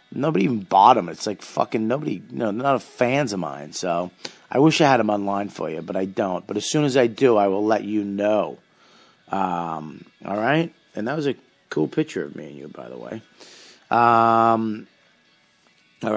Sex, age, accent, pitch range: male, 40-59, American, 100-125 Hz